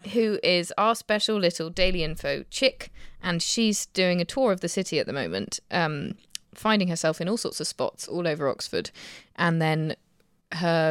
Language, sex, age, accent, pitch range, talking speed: English, female, 20-39, British, 165-215 Hz, 180 wpm